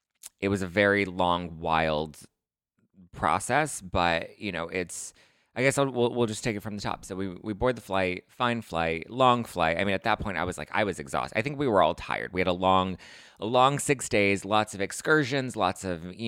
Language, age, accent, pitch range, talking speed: English, 30-49, American, 90-120 Hz, 225 wpm